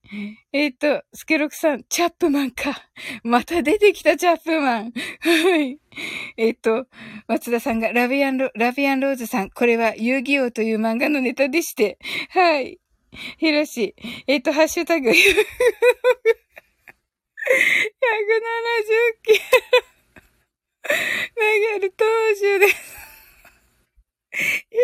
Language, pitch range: Japanese, 250-385 Hz